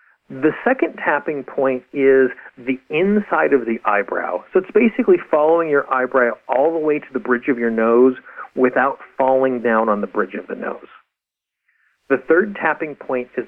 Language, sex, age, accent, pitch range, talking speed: English, male, 40-59, American, 125-160 Hz, 175 wpm